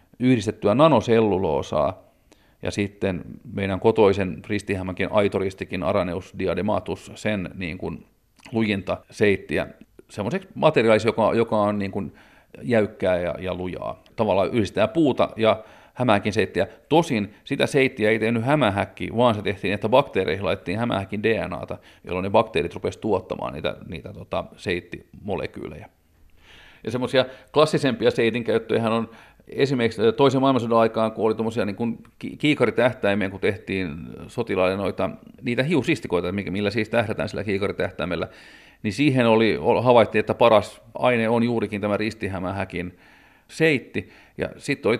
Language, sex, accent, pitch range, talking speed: Finnish, male, native, 100-120 Hz, 125 wpm